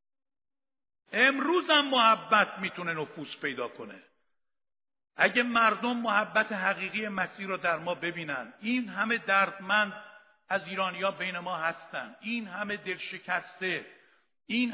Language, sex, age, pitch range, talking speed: Persian, male, 60-79, 195-235 Hz, 115 wpm